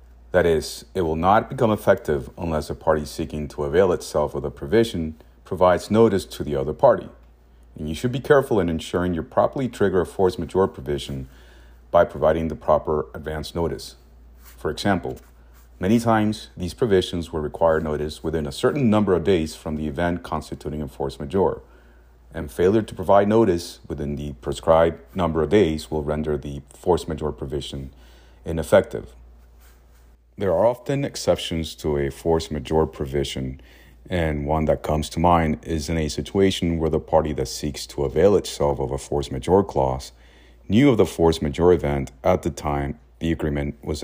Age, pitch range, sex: 40-59, 65-80 Hz, male